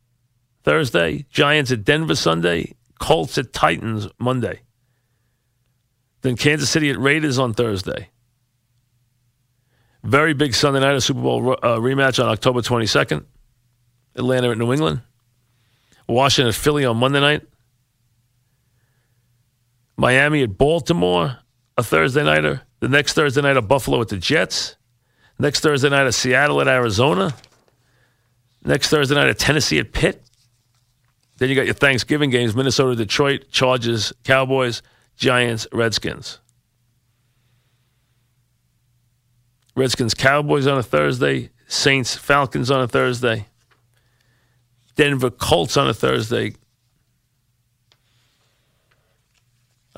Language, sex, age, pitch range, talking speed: English, male, 40-59, 120-130 Hz, 110 wpm